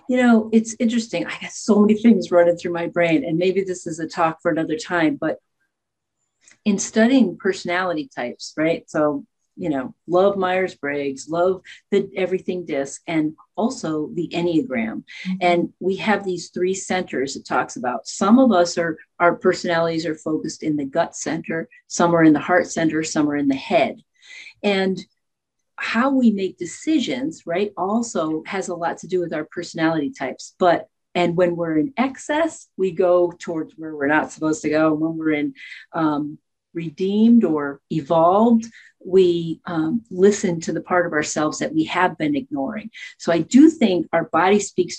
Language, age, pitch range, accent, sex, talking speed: English, 40-59, 160-220 Hz, American, female, 175 wpm